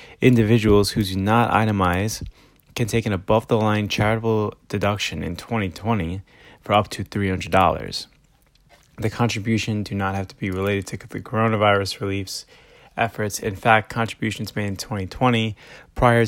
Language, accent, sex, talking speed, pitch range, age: English, American, male, 135 wpm, 100-115 Hz, 20-39